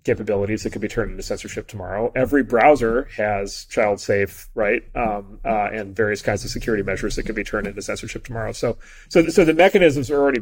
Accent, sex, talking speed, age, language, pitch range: American, male, 205 wpm, 30-49, English, 105-145 Hz